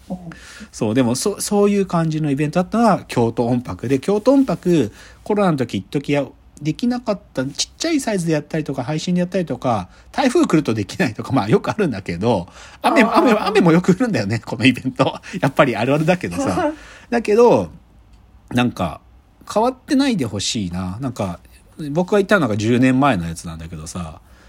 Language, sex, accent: Japanese, male, native